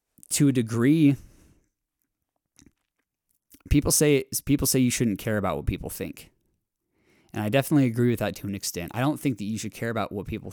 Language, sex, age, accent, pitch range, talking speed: English, male, 20-39, American, 95-115 Hz, 190 wpm